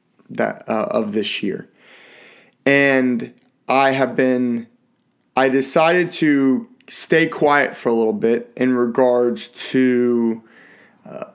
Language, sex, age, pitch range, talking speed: English, male, 20-39, 115-140 Hz, 115 wpm